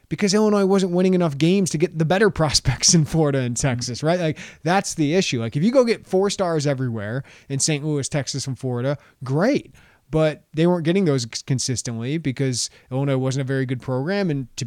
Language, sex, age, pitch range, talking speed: English, male, 20-39, 130-160 Hz, 205 wpm